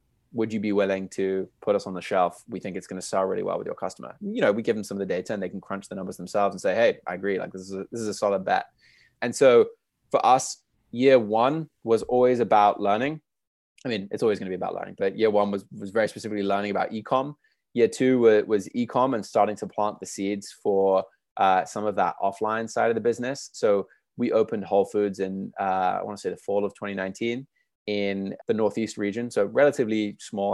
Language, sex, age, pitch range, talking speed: English, male, 20-39, 95-115 Hz, 235 wpm